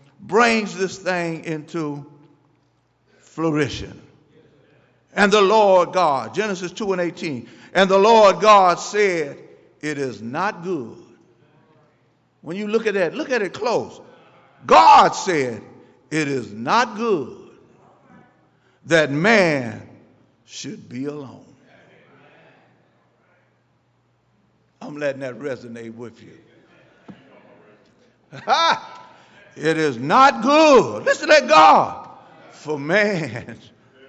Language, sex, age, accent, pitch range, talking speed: English, male, 60-79, American, 145-220 Hz, 100 wpm